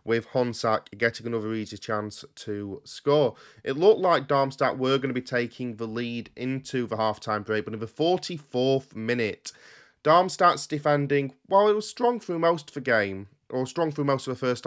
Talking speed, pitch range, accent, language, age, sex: 190 wpm, 115-140 Hz, British, English, 30-49, male